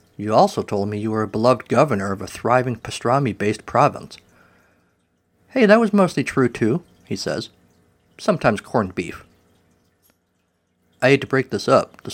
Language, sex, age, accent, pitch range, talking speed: English, male, 50-69, American, 95-125 Hz, 160 wpm